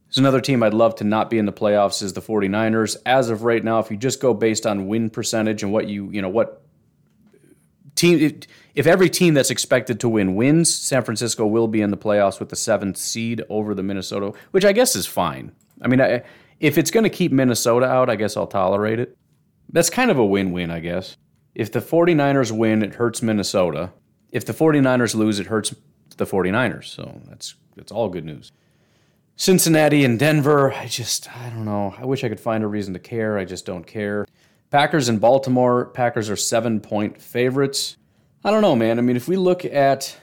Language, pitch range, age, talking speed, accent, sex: English, 105-140 Hz, 30-49, 210 wpm, American, male